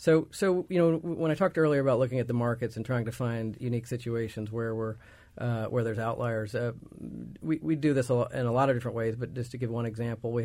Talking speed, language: 245 wpm, English